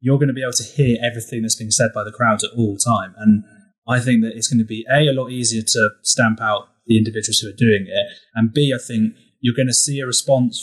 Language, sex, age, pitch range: English, male, 20-39, 110-135 Hz